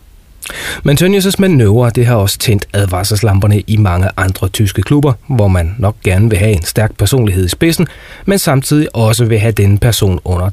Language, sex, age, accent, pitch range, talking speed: Danish, male, 30-49, native, 95-125 Hz, 180 wpm